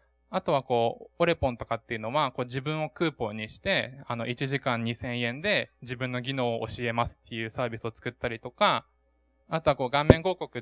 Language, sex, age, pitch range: Japanese, male, 20-39, 120-160 Hz